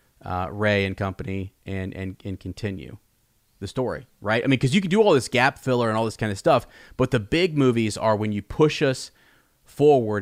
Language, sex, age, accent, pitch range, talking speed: English, male, 30-49, American, 105-130 Hz, 215 wpm